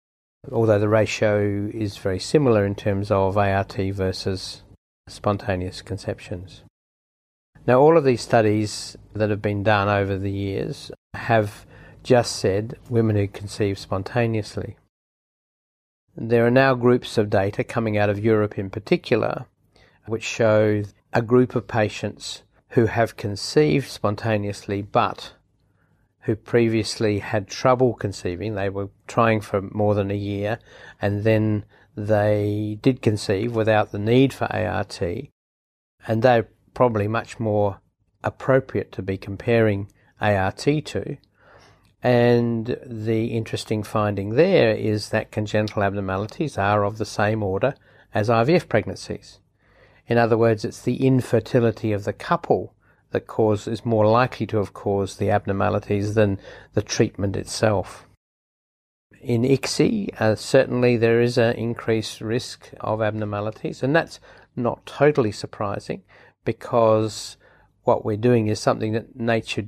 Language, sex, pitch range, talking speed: English, male, 100-115 Hz, 130 wpm